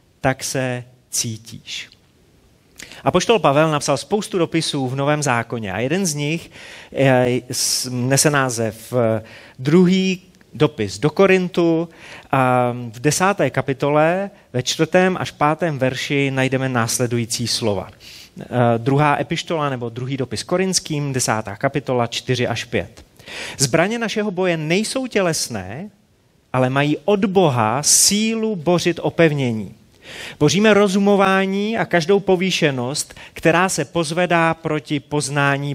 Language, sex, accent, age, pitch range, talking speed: Czech, male, native, 30-49, 125-190 Hz, 110 wpm